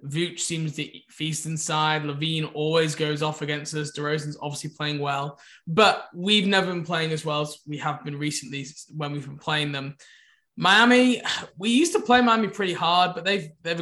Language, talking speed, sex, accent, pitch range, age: English, 185 wpm, male, British, 150-185 Hz, 20-39